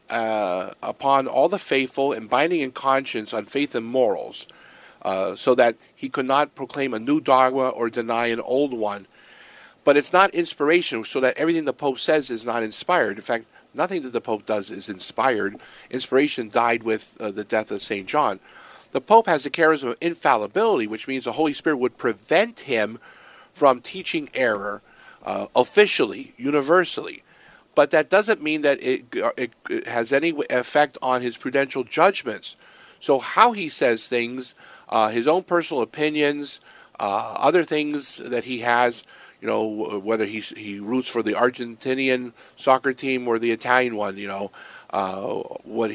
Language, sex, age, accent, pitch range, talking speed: English, male, 50-69, American, 120-155 Hz, 170 wpm